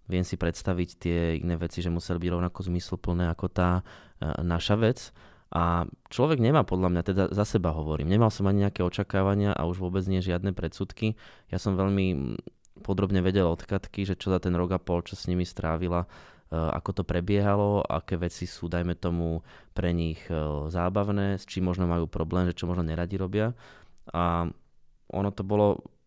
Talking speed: 175 wpm